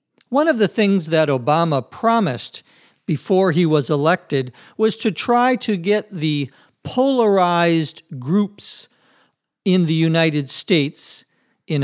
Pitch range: 145-195 Hz